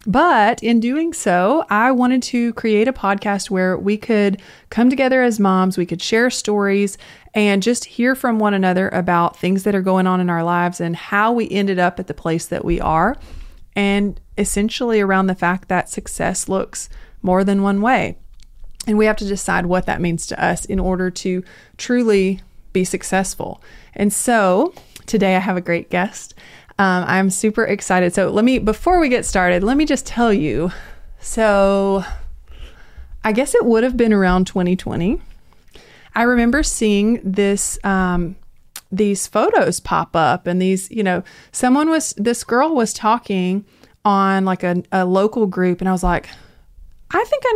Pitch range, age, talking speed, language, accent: 185-235 Hz, 20-39, 175 wpm, English, American